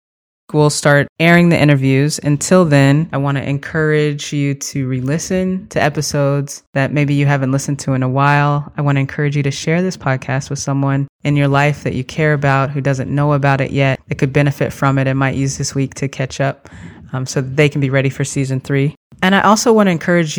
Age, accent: 20-39, American